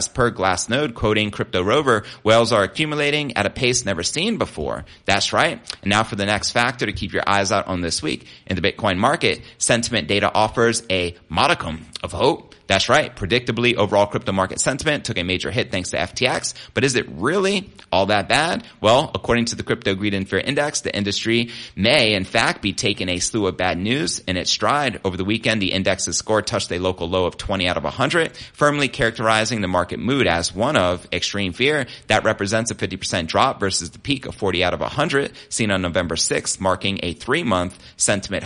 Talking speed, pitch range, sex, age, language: 210 wpm, 95-120 Hz, male, 30-49, English